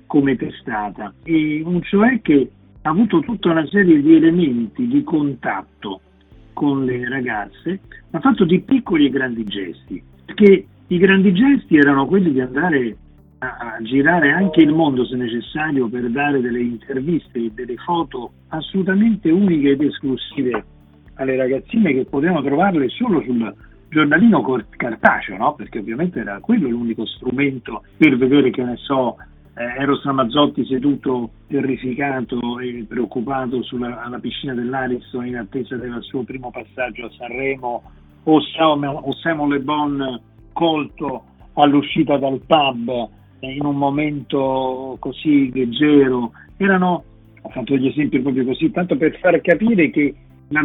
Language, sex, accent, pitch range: Italian, male, native, 125-165 Hz